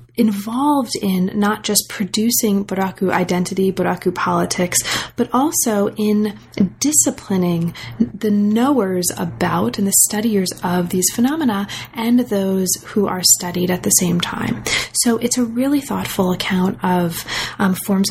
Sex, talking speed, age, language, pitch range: female, 135 wpm, 30-49, English, 185-220 Hz